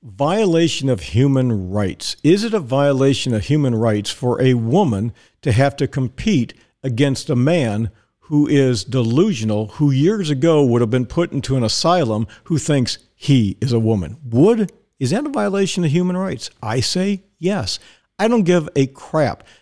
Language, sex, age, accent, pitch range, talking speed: English, male, 50-69, American, 120-170 Hz, 170 wpm